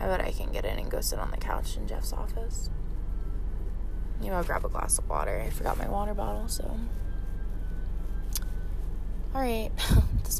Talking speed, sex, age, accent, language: 175 wpm, female, 20-39, American, English